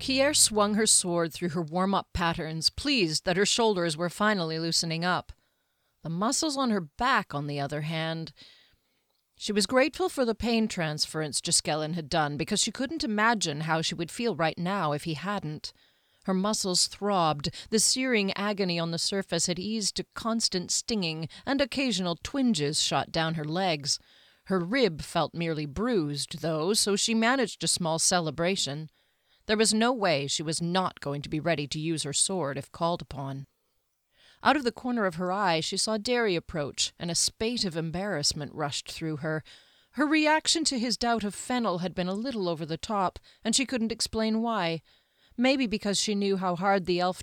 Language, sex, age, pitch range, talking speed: English, female, 40-59, 160-220 Hz, 185 wpm